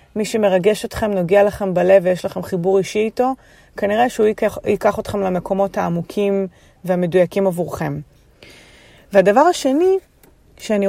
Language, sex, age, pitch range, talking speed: English, female, 30-49, 185-225 Hz, 125 wpm